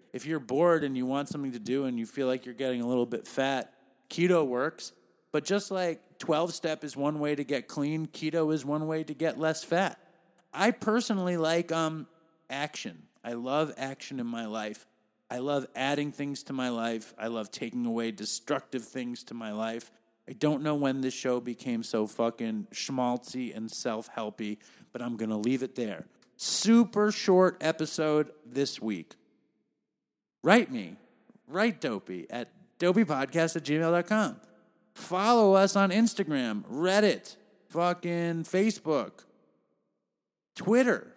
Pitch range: 125-175 Hz